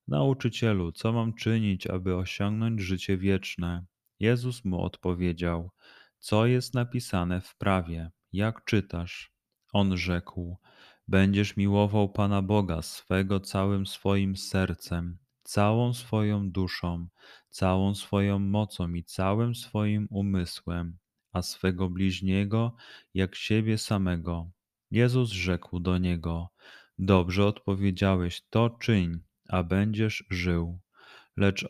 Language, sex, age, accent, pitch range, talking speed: Polish, male, 30-49, native, 90-105 Hz, 105 wpm